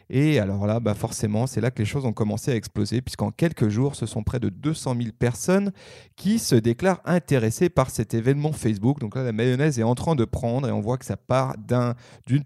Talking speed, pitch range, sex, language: 230 wpm, 110-145 Hz, male, French